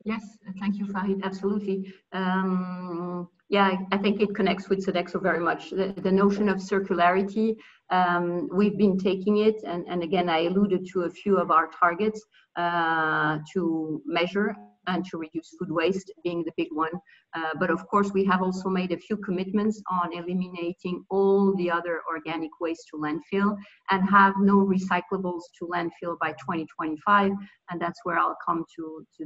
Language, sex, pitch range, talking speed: English, female, 170-200 Hz, 170 wpm